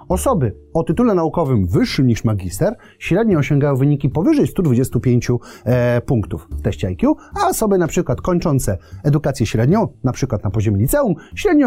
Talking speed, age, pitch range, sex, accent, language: 150 wpm, 30-49, 115-175 Hz, male, native, Polish